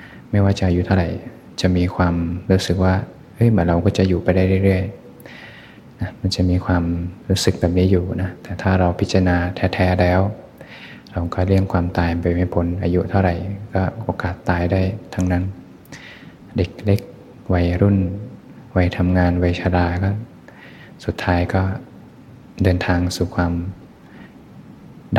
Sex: male